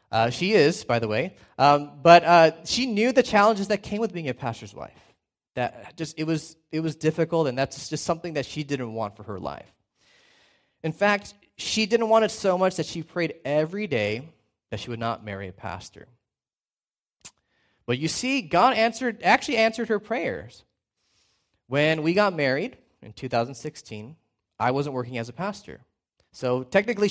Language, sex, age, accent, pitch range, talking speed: English, male, 20-39, American, 120-175 Hz, 180 wpm